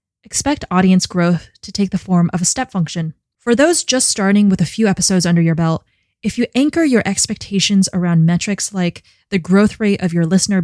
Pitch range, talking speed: 170-215 Hz, 205 wpm